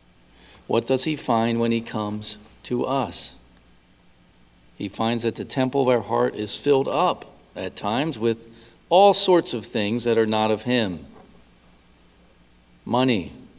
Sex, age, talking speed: male, 50-69, 145 wpm